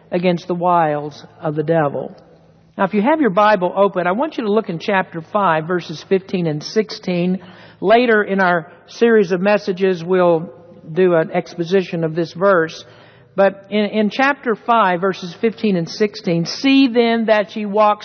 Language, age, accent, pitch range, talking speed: English, 60-79, American, 180-235 Hz, 175 wpm